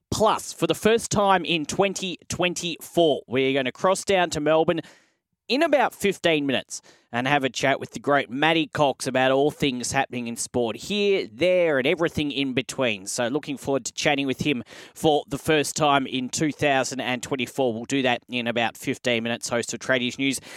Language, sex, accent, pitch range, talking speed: English, male, Australian, 135-170 Hz, 185 wpm